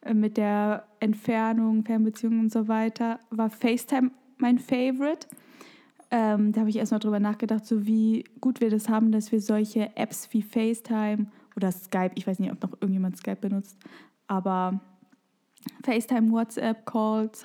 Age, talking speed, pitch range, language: 10-29, 150 wpm, 215-250 Hz, German